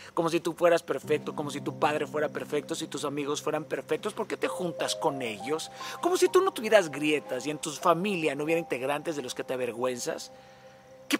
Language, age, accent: Spanish, 40-59, Mexican